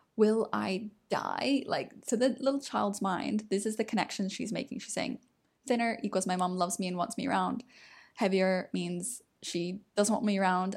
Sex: female